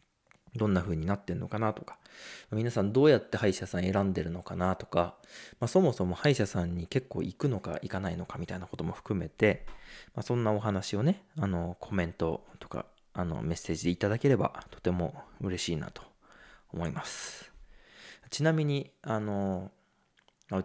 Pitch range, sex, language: 90-120 Hz, male, Japanese